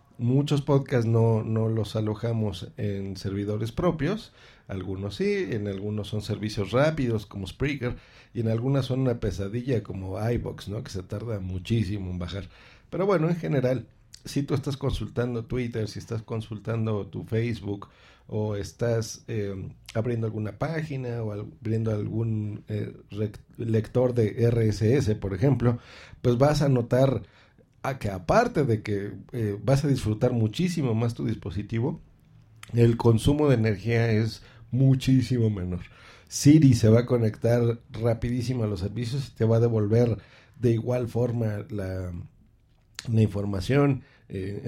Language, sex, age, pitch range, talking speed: Spanish, male, 50-69, 105-130 Hz, 140 wpm